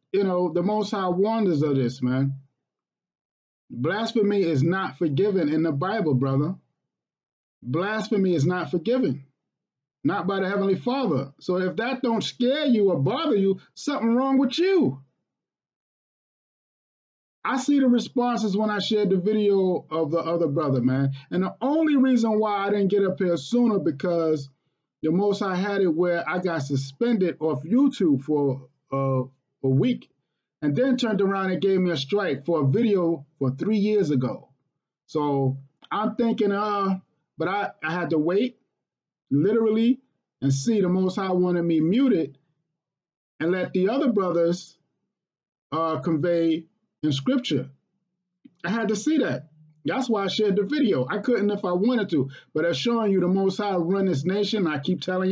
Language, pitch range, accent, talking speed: English, 155-210 Hz, American, 165 wpm